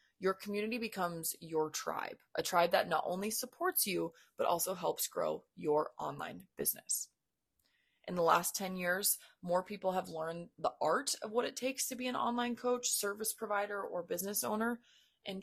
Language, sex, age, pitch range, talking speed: English, female, 20-39, 170-220 Hz, 175 wpm